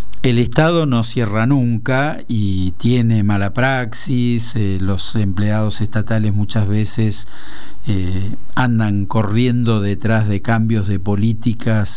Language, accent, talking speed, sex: Spanish, Argentinian, 115 wpm, male